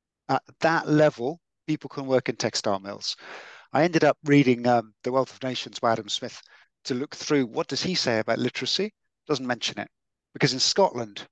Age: 50-69